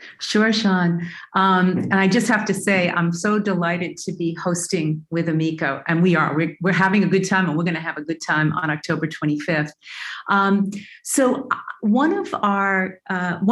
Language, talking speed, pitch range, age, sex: English, 190 wpm, 170-200 Hz, 40-59, female